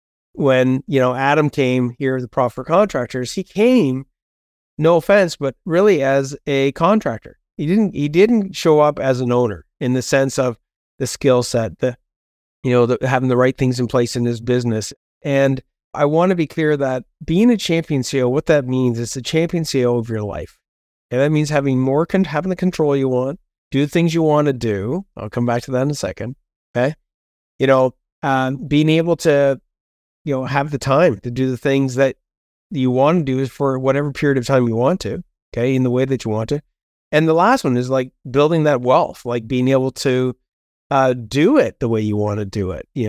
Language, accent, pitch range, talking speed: English, American, 120-145 Hz, 215 wpm